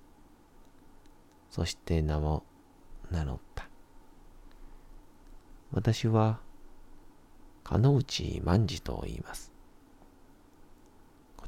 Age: 40-59